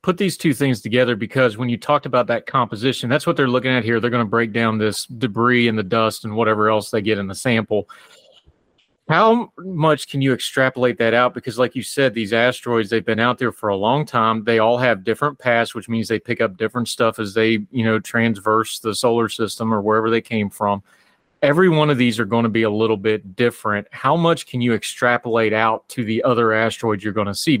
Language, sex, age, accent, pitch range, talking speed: English, male, 30-49, American, 110-130 Hz, 235 wpm